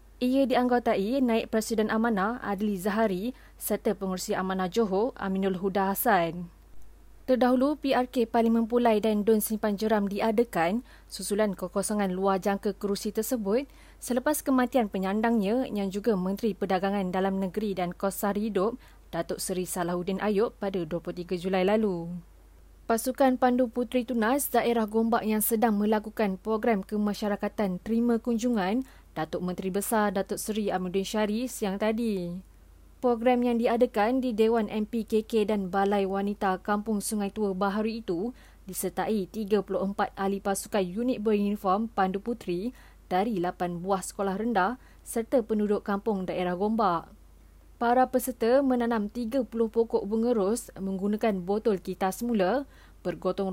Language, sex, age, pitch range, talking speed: Malay, female, 20-39, 195-230 Hz, 130 wpm